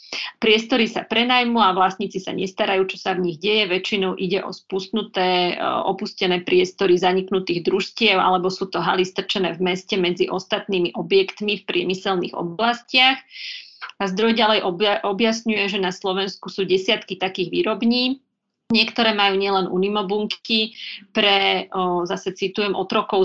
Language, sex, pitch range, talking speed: Slovak, female, 185-215 Hz, 135 wpm